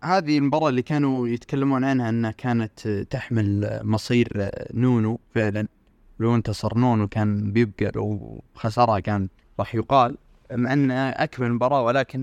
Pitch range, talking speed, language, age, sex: 105-135 Hz, 130 wpm, Arabic, 20-39, male